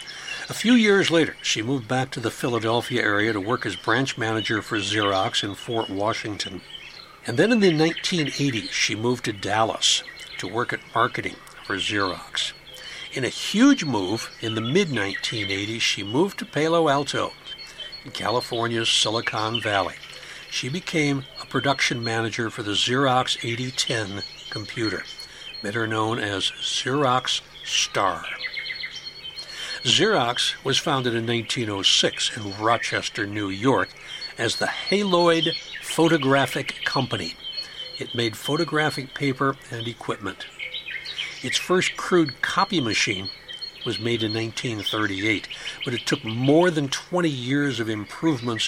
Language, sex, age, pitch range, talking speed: English, male, 60-79, 110-140 Hz, 130 wpm